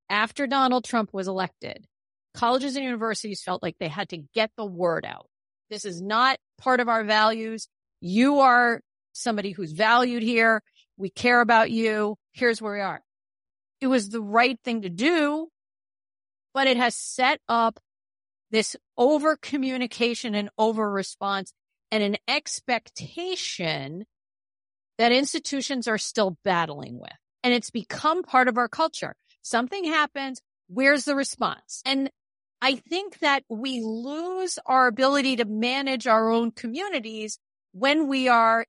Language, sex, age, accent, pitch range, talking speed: English, female, 40-59, American, 210-275 Hz, 140 wpm